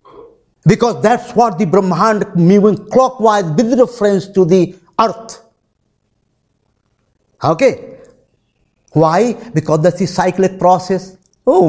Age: 50-69